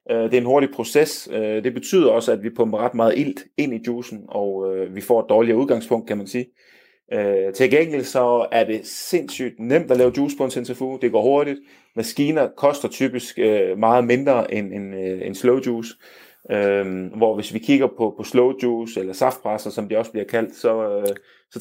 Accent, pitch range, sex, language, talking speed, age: native, 110-135 Hz, male, Danish, 180 wpm, 30-49